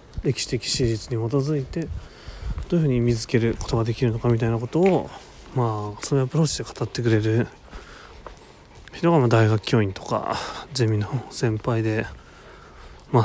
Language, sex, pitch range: Japanese, male, 110-135 Hz